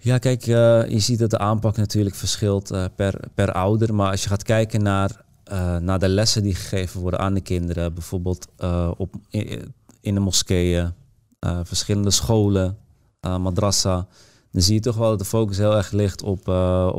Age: 30-49